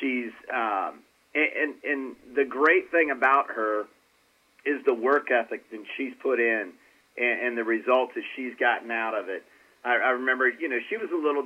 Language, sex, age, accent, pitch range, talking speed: English, male, 40-59, American, 115-155 Hz, 190 wpm